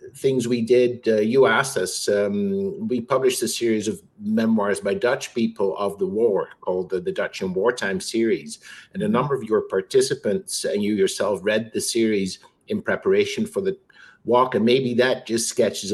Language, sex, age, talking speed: English, male, 60-79, 185 wpm